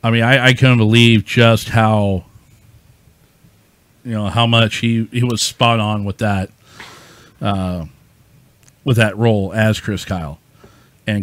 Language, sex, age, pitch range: English, male, 40-59, 110-125 Hz